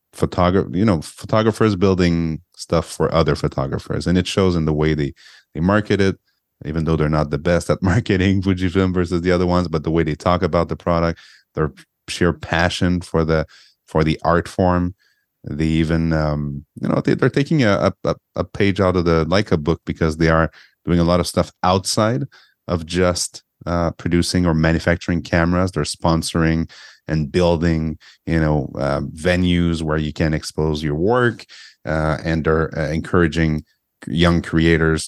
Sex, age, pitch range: male, 30-49, 80-95 Hz